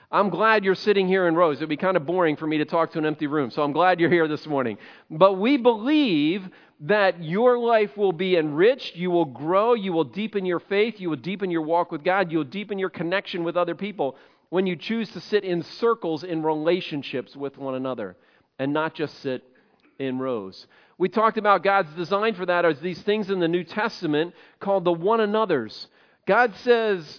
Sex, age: male, 40-59